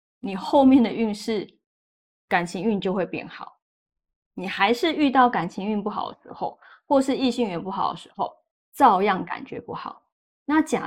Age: 20-39